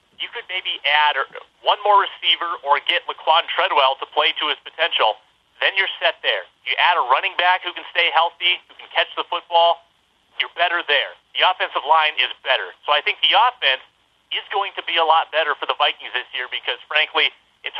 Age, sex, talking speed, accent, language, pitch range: 30-49, male, 210 wpm, American, English, 150-185 Hz